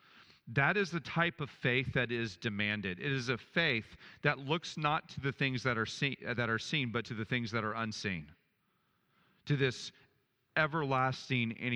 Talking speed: 175 wpm